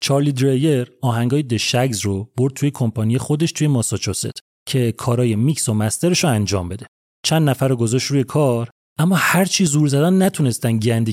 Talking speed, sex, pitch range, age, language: 160 wpm, male, 120-170 Hz, 30-49, Persian